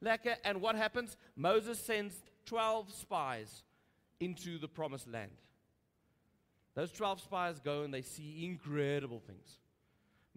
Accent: South African